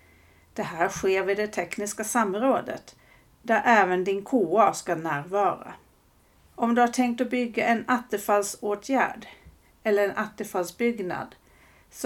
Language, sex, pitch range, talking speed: Swedish, female, 175-235 Hz, 125 wpm